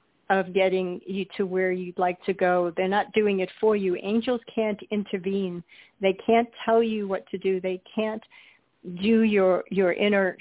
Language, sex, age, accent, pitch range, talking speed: English, female, 50-69, American, 180-200 Hz, 180 wpm